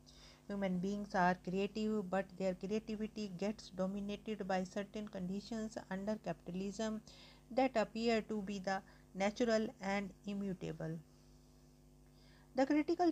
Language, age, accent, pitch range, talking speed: English, 50-69, Indian, 185-225 Hz, 110 wpm